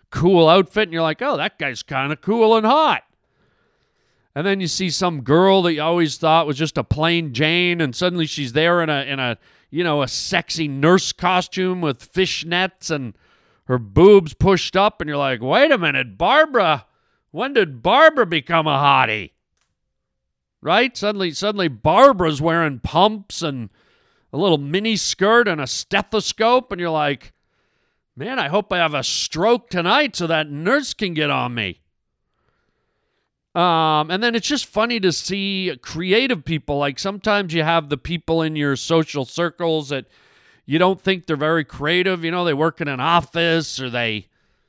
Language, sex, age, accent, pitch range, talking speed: English, male, 40-59, American, 150-195 Hz, 175 wpm